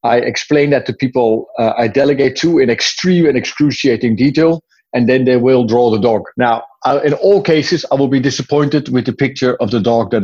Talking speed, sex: 210 wpm, male